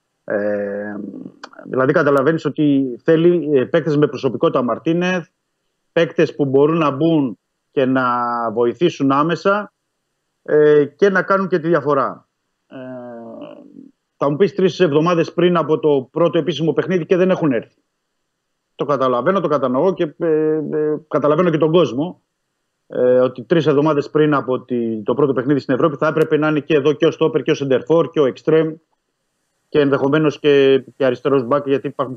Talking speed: 165 wpm